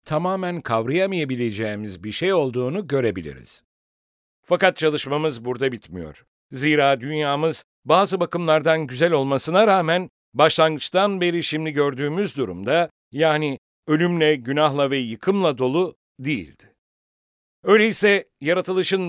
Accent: Turkish